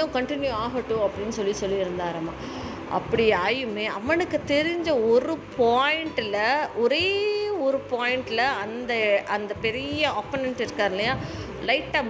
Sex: female